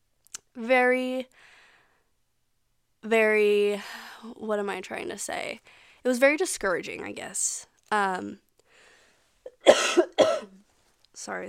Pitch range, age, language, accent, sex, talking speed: 195-250 Hz, 20-39, English, American, female, 85 wpm